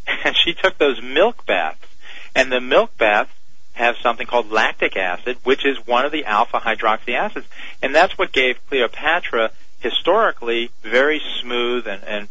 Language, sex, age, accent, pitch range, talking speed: English, male, 40-59, American, 110-135 Hz, 160 wpm